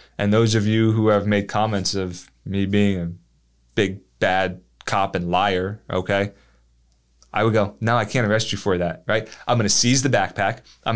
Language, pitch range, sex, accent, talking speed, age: English, 95-125 Hz, male, American, 190 wpm, 20-39